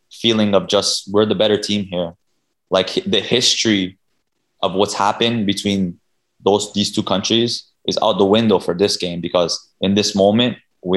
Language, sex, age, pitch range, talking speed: English, male, 20-39, 95-110 Hz, 170 wpm